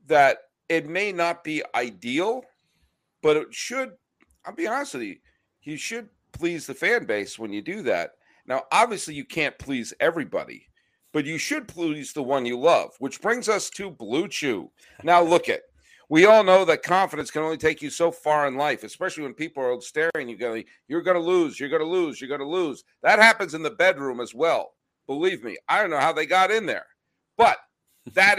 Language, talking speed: English, 200 wpm